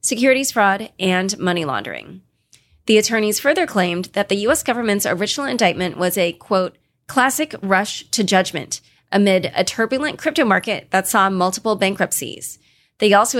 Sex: female